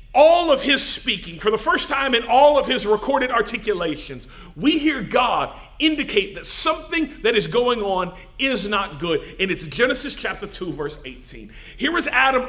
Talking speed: 180 wpm